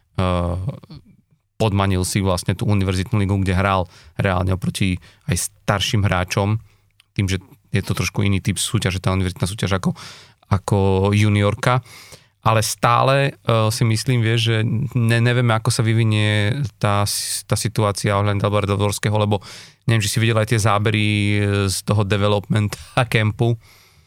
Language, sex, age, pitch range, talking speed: Slovak, male, 30-49, 95-110 Hz, 140 wpm